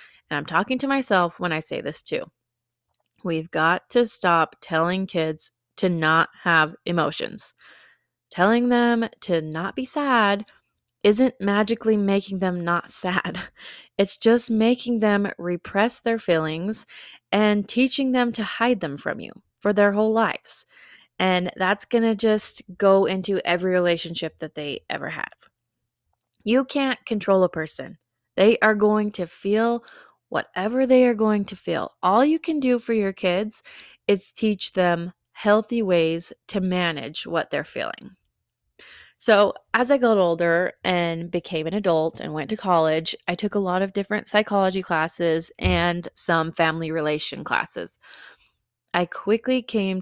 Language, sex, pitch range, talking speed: English, female, 170-220 Hz, 150 wpm